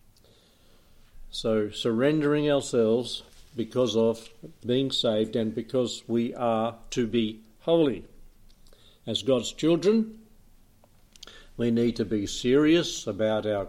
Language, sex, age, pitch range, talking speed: English, male, 60-79, 110-135 Hz, 105 wpm